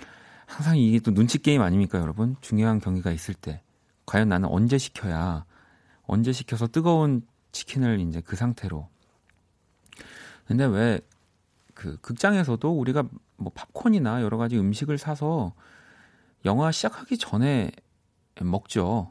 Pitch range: 90-130 Hz